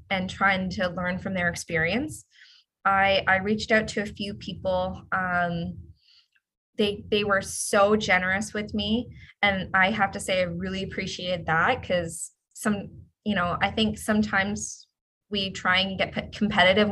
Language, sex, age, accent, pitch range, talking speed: English, female, 20-39, American, 185-210 Hz, 155 wpm